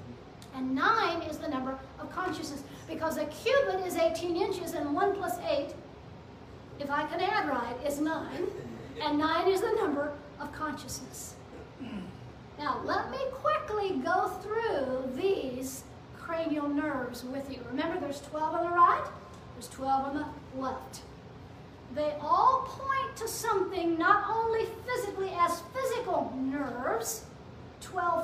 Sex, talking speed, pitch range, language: female, 140 wpm, 285-375 Hz, English